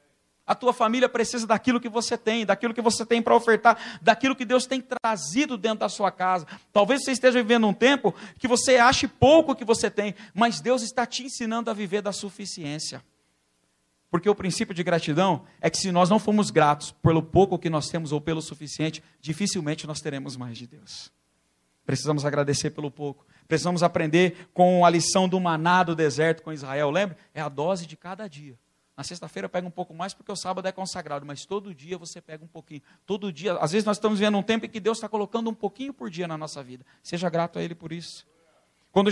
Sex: male